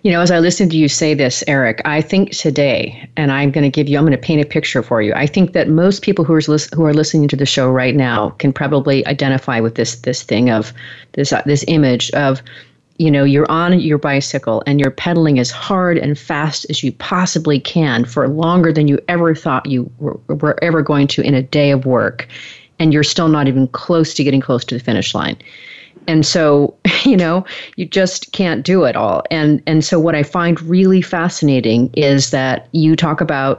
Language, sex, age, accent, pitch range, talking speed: English, female, 40-59, American, 140-165 Hz, 225 wpm